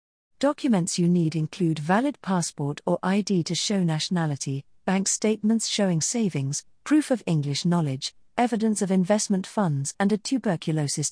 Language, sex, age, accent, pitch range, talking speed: English, female, 40-59, British, 160-215 Hz, 140 wpm